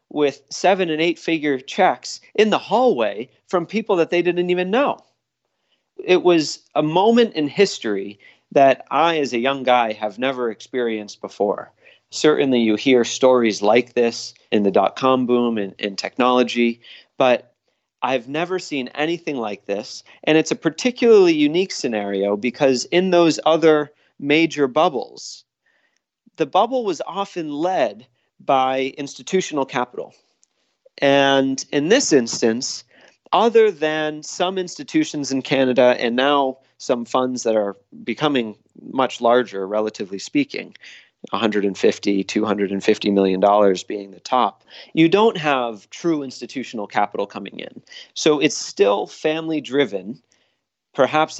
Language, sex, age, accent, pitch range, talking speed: English, male, 40-59, American, 120-165 Hz, 135 wpm